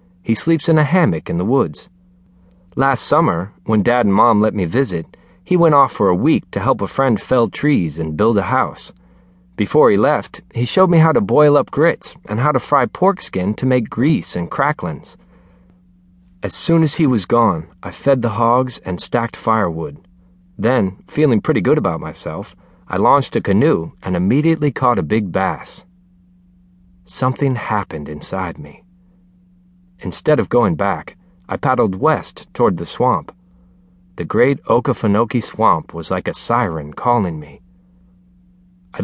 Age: 40-59